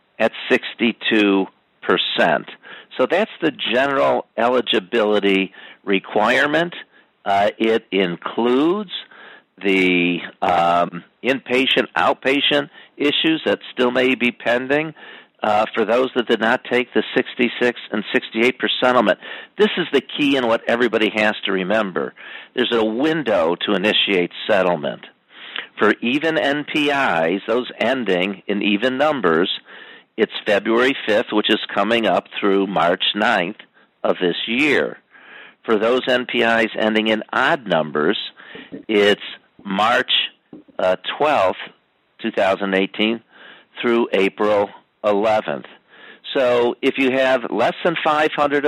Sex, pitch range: male, 100-130 Hz